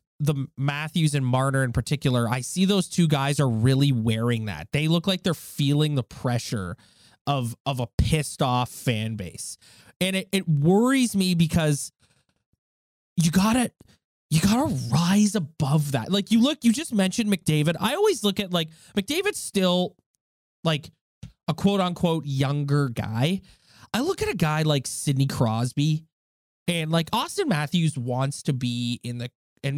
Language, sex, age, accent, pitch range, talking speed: English, male, 20-39, American, 135-190 Hz, 165 wpm